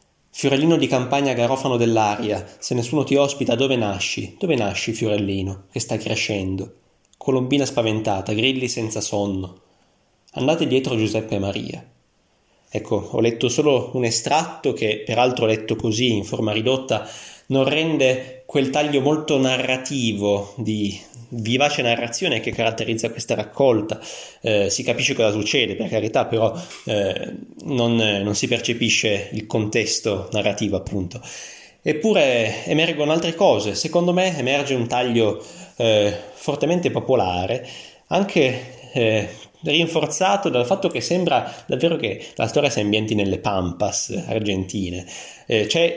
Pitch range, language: 105-135 Hz, Italian